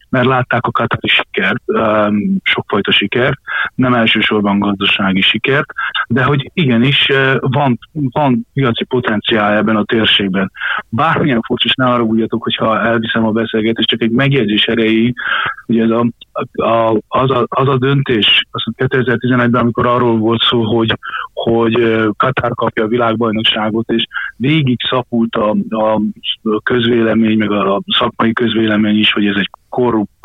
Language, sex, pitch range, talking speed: Hungarian, male, 110-130 Hz, 145 wpm